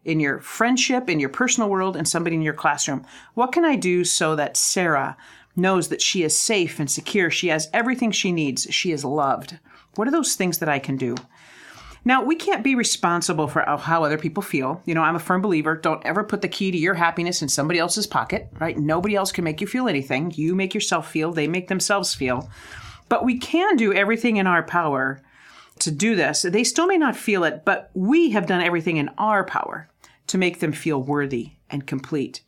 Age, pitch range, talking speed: 40-59, 155-205 Hz, 220 wpm